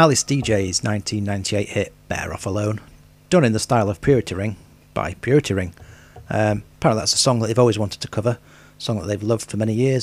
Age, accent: 40-59, British